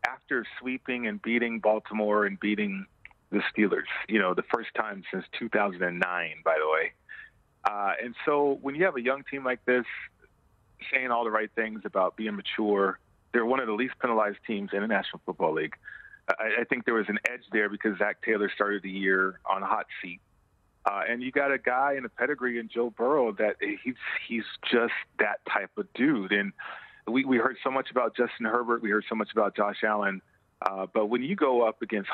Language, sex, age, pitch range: English, male, 40-59, 105-130 Hz